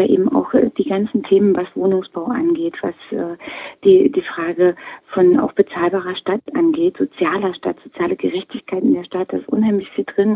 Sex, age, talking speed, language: female, 30-49, 170 wpm, German